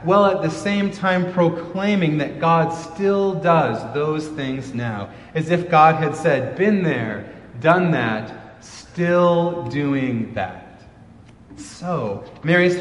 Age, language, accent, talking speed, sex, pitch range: 30-49, English, American, 125 wpm, male, 115-170 Hz